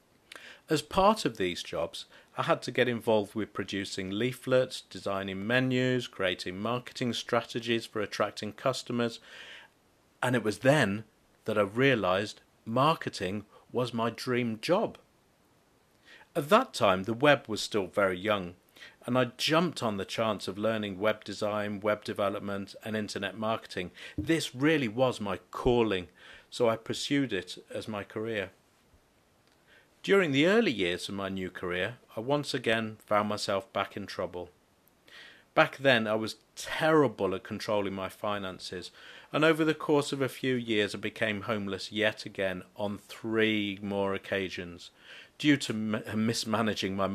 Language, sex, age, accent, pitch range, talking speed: English, male, 50-69, British, 100-125 Hz, 145 wpm